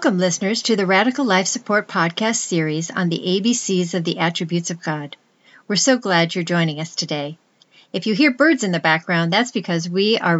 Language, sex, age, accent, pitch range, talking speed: English, female, 40-59, American, 160-220 Hz, 200 wpm